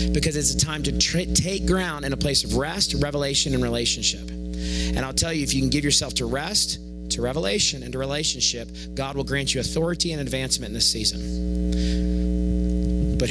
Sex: male